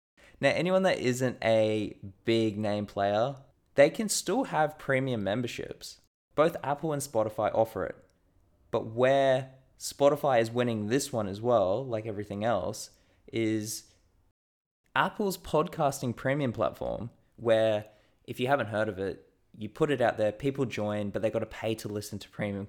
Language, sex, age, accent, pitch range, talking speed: English, male, 20-39, Australian, 105-140 Hz, 160 wpm